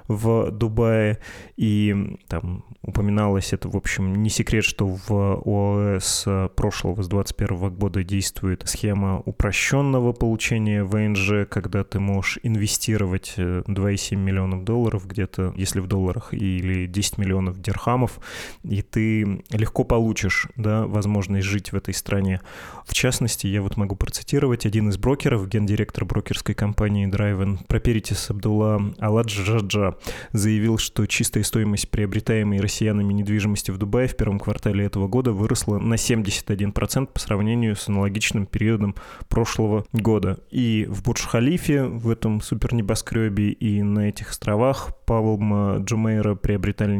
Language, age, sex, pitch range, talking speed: Russian, 20-39, male, 100-115 Hz, 125 wpm